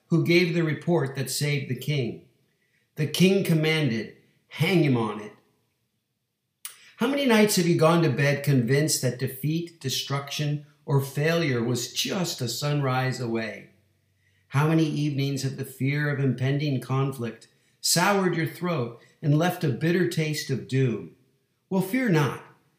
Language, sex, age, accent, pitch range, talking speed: English, male, 50-69, American, 125-165 Hz, 145 wpm